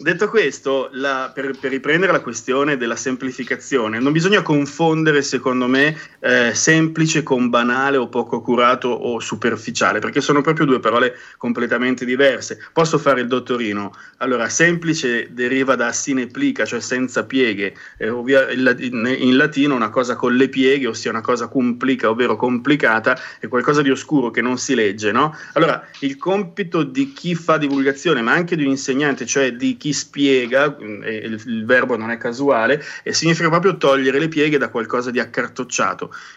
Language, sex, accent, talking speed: Italian, male, native, 160 wpm